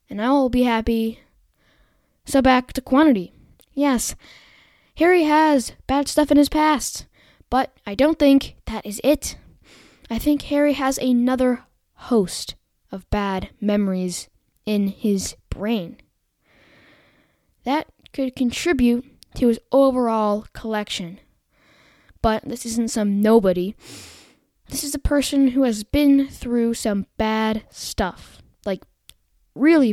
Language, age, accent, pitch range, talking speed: English, 10-29, American, 225-290 Hz, 120 wpm